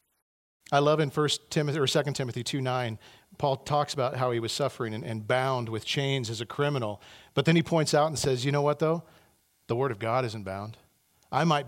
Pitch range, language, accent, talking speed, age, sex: 110-145 Hz, English, American, 215 wpm, 40-59, male